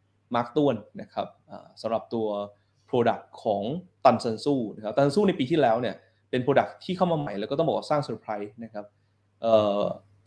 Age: 20-39